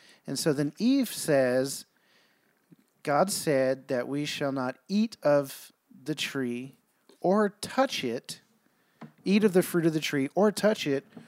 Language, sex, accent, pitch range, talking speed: English, male, American, 145-195 Hz, 150 wpm